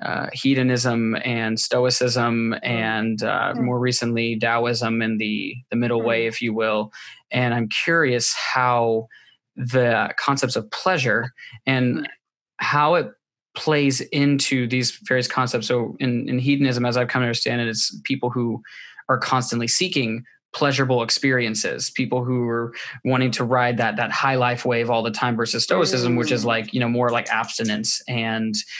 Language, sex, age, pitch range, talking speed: English, male, 20-39, 115-125 Hz, 160 wpm